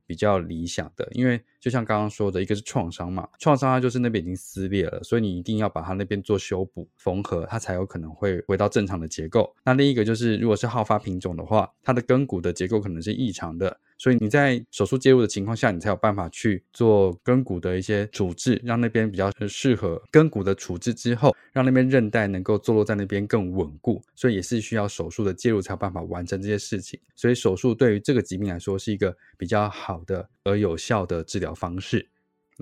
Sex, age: male, 20-39